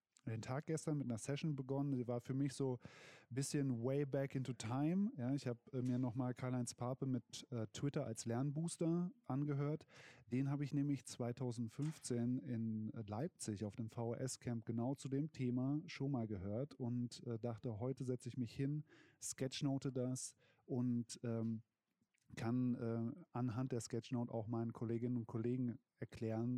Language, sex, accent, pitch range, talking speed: German, male, German, 115-135 Hz, 165 wpm